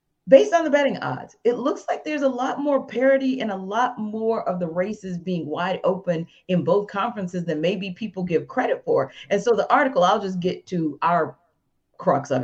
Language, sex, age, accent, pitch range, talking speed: English, female, 40-59, American, 160-225 Hz, 205 wpm